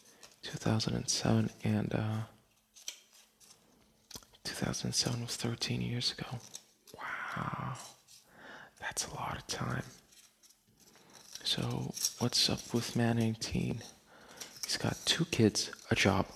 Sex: male